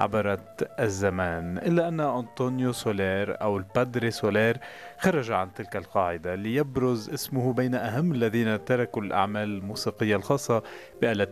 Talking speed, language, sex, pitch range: 120 wpm, Arabic, male, 100-130 Hz